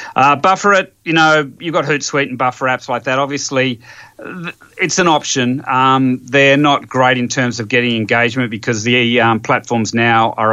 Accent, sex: Australian, male